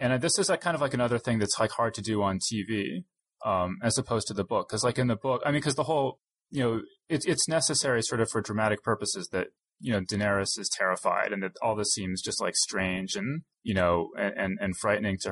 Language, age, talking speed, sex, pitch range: English, 20-39, 250 wpm, male, 95-125 Hz